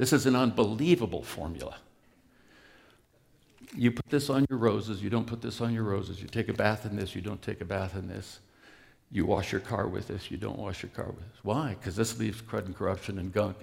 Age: 60-79